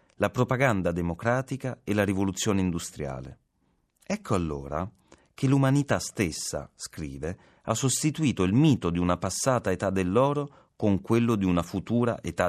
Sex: male